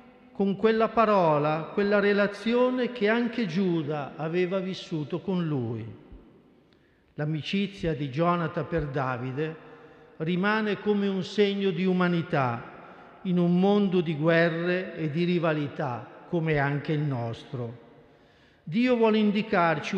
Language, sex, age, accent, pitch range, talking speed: Italian, male, 50-69, native, 155-200 Hz, 115 wpm